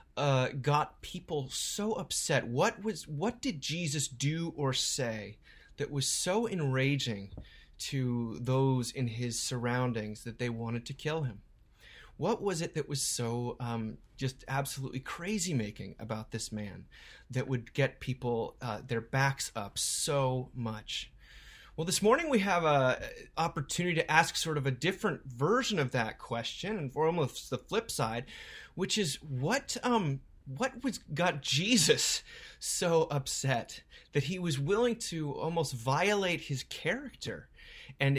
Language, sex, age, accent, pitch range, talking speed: English, male, 30-49, American, 125-165 Hz, 150 wpm